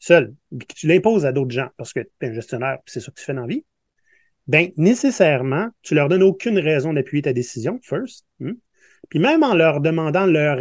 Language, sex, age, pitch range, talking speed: French, male, 30-49, 130-175 Hz, 225 wpm